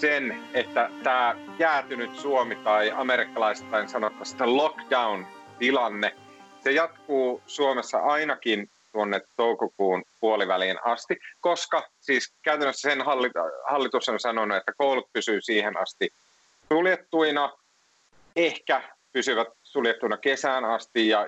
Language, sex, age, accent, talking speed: Finnish, male, 30-49, native, 105 wpm